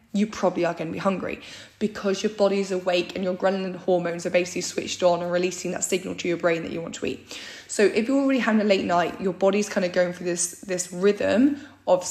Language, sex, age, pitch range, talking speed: English, female, 10-29, 175-205 Hz, 245 wpm